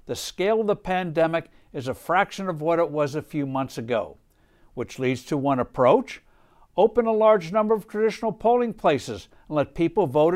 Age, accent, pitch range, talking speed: 60-79, American, 150-220 Hz, 190 wpm